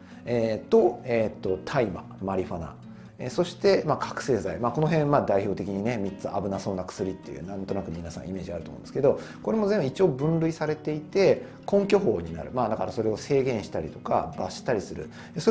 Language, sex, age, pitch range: Japanese, male, 40-59, 95-145 Hz